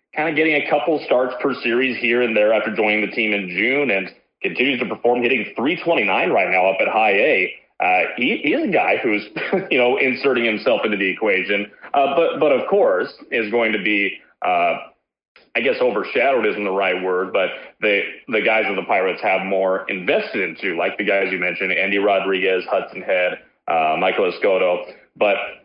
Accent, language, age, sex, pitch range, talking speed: American, English, 30-49, male, 100-145 Hz, 200 wpm